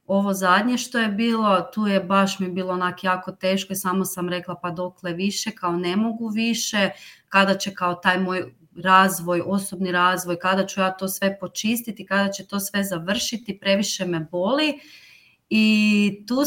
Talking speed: 175 wpm